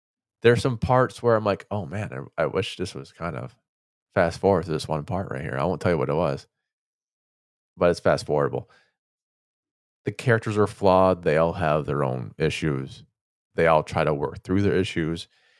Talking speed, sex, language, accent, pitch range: 200 wpm, male, English, American, 95-120 Hz